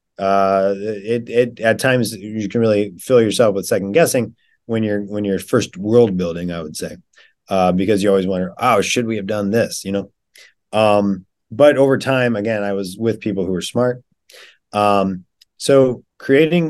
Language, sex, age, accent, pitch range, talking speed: English, male, 30-49, American, 100-115 Hz, 185 wpm